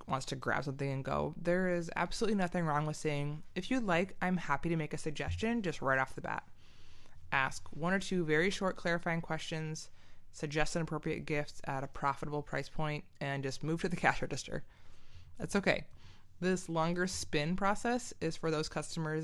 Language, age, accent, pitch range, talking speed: English, 20-39, American, 145-185 Hz, 190 wpm